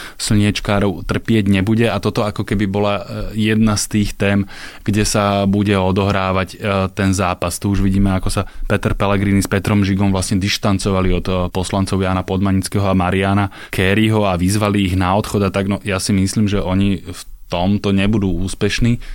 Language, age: Slovak, 20-39